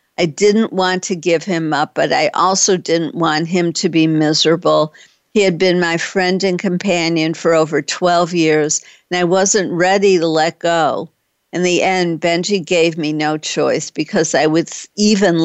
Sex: female